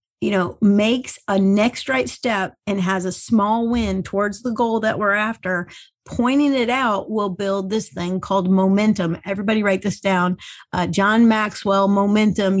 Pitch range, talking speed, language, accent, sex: 195-235 Hz, 165 wpm, English, American, female